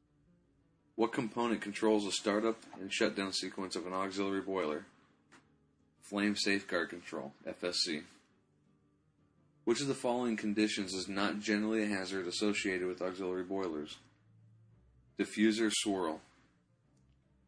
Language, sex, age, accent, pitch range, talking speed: English, male, 40-59, American, 95-110 Hz, 110 wpm